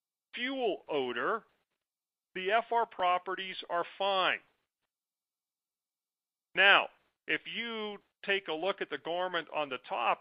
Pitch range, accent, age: 150-200 Hz, American, 50-69